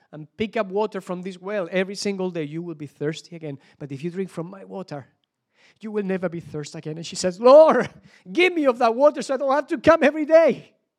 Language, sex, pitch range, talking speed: English, male, 165-230 Hz, 245 wpm